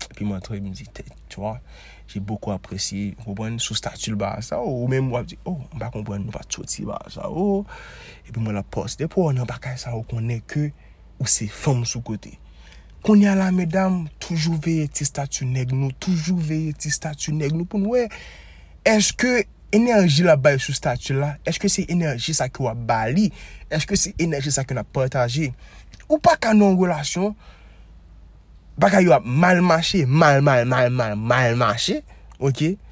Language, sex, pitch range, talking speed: French, male, 120-185 Hz, 200 wpm